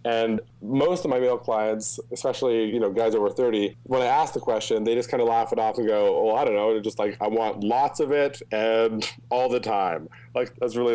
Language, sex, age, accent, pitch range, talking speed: English, male, 20-39, American, 110-135 Hz, 250 wpm